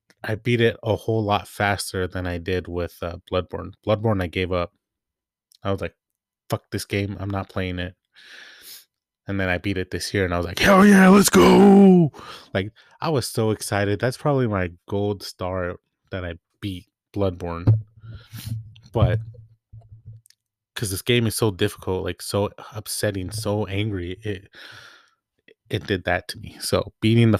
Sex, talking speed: male, 170 wpm